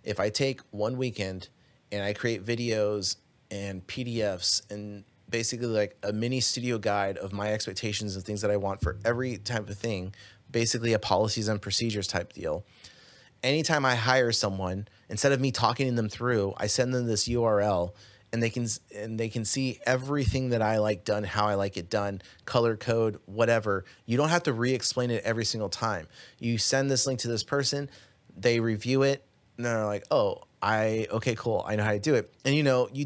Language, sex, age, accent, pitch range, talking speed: English, male, 30-49, American, 105-130 Hz, 190 wpm